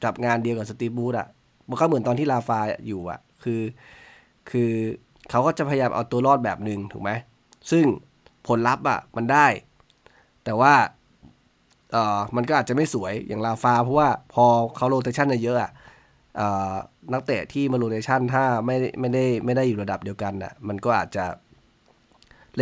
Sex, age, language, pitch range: male, 20-39, Thai, 110-130 Hz